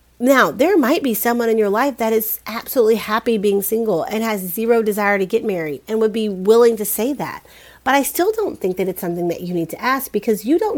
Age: 40-59